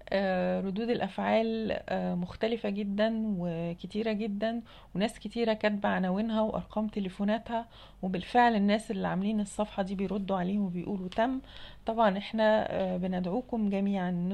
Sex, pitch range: female, 185-220 Hz